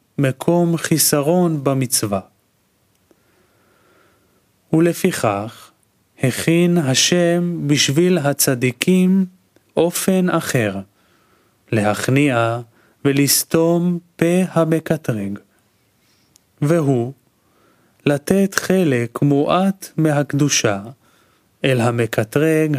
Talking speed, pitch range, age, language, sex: 55 wpm, 120-165 Hz, 30-49, Hebrew, male